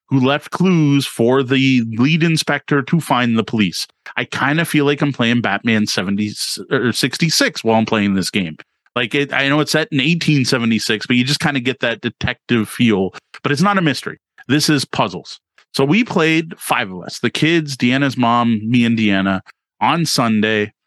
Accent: American